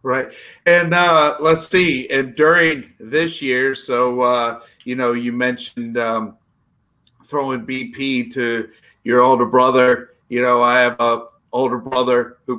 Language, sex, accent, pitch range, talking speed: English, male, American, 110-130 Hz, 145 wpm